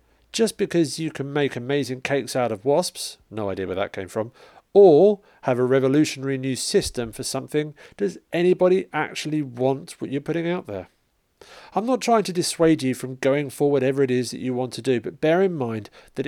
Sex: male